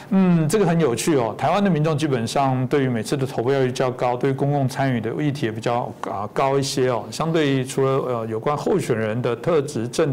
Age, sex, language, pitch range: 50-69, male, Chinese, 120-145 Hz